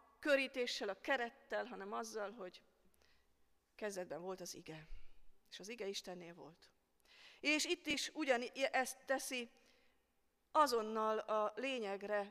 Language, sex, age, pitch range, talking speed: Hungarian, female, 40-59, 195-245 Hz, 115 wpm